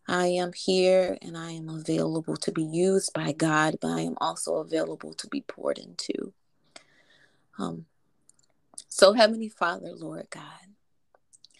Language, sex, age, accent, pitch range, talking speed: English, female, 30-49, American, 155-195 Hz, 140 wpm